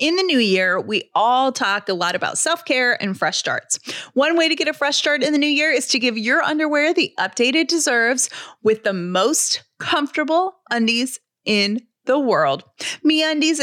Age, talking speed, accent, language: 30-49, 190 wpm, American, English